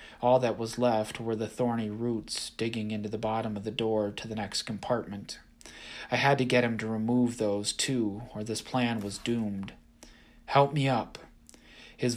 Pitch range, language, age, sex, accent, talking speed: 105-120 Hz, English, 30-49, male, American, 185 wpm